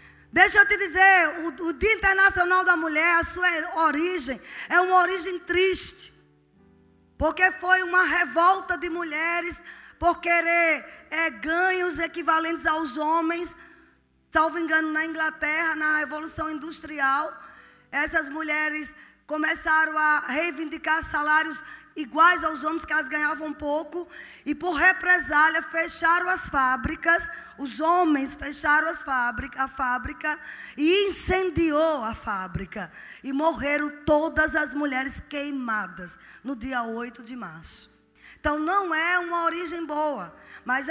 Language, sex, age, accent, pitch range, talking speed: Portuguese, female, 20-39, Brazilian, 300-345 Hz, 120 wpm